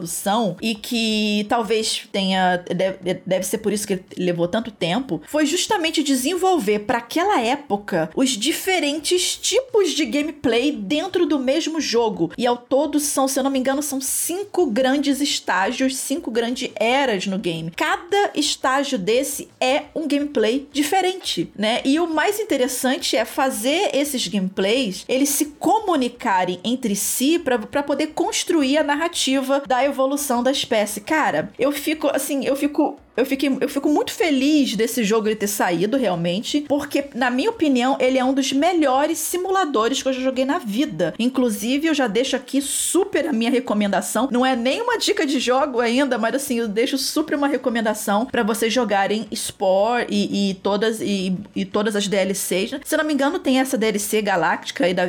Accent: Brazilian